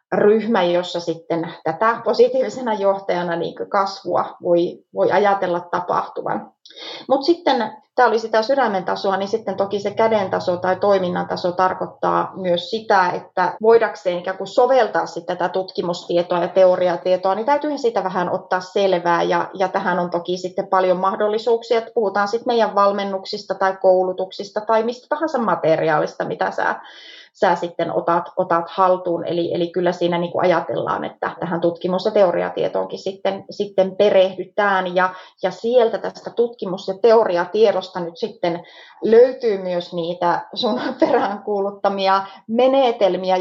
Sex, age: female, 30-49